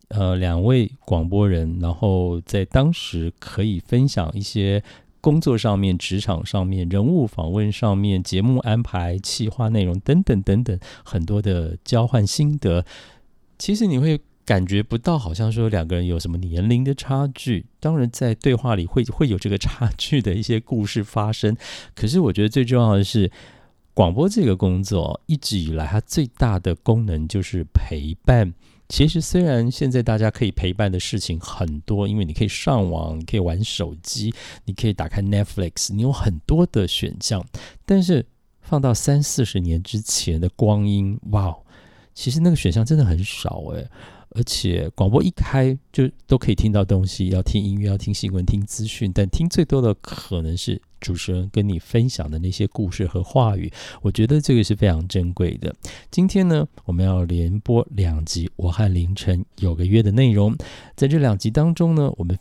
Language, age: Chinese, 50-69